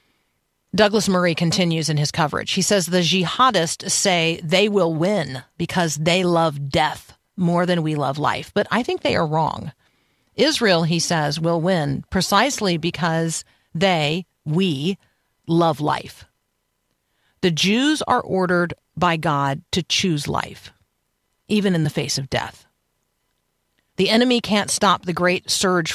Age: 40-59